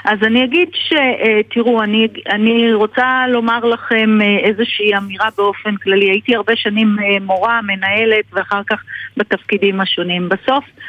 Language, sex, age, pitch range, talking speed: Hebrew, female, 50-69, 200-255 Hz, 125 wpm